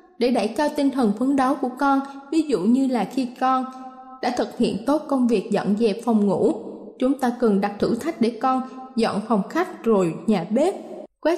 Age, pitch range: 20-39, 225-275 Hz